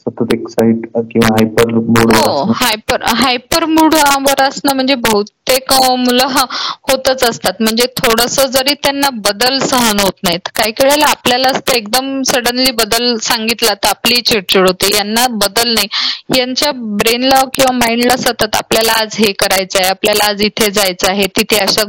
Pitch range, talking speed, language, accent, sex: 215-265 Hz, 125 wpm, Marathi, native, female